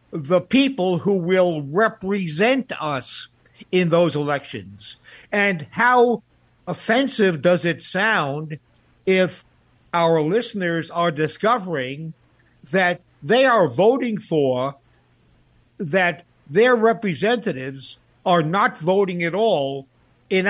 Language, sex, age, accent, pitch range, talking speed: English, male, 50-69, American, 155-200 Hz, 100 wpm